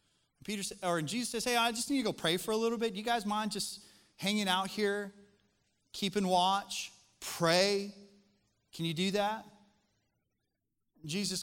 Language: English